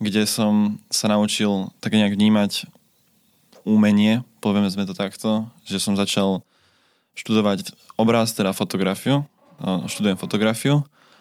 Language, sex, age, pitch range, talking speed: Slovak, male, 20-39, 100-110 Hz, 110 wpm